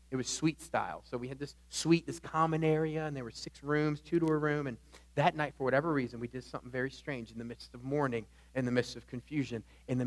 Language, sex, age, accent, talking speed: English, male, 40-59, American, 250 wpm